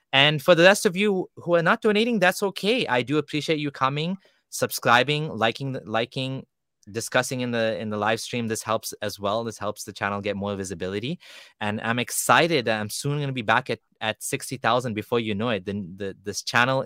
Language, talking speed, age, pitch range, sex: English, 210 wpm, 20-39, 105-135 Hz, male